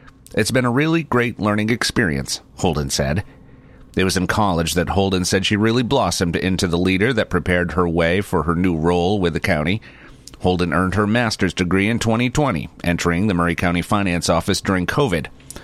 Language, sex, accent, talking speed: English, male, American, 185 wpm